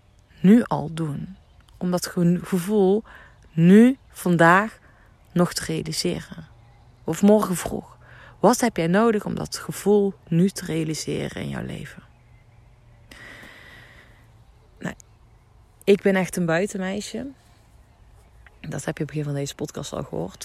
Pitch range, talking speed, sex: 140-190 Hz, 130 wpm, female